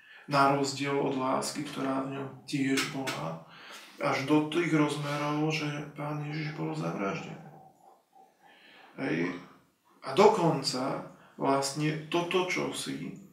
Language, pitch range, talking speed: Slovak, 135-155 Hz, 110 wpm